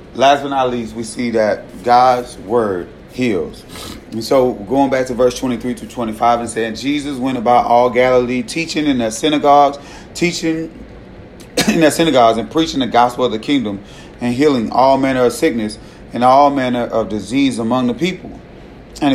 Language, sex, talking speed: English, male, 175 wpm